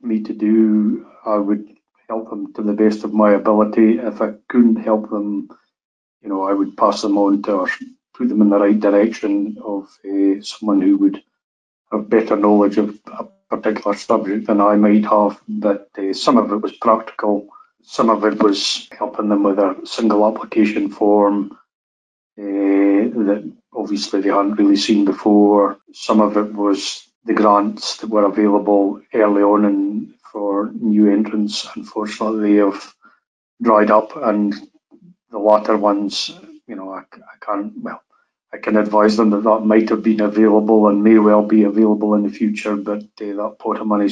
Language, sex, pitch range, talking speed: English, male, 100-110 Hz, 175 wpm